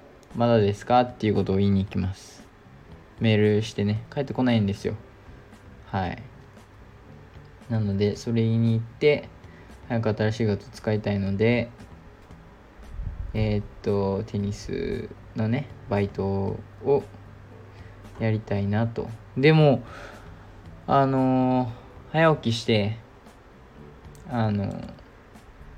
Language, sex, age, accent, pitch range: Japanese, male, 20-39, native, 100-115 Hz